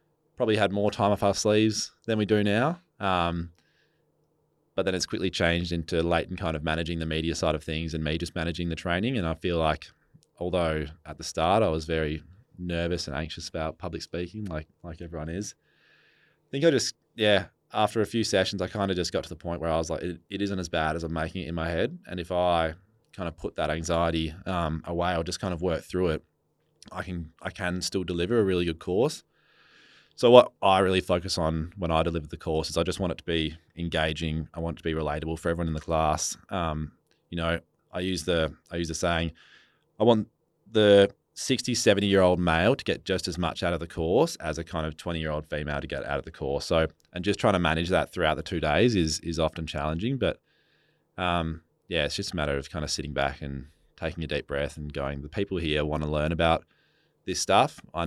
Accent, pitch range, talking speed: Australian, 80-95 Hz, 230 wpm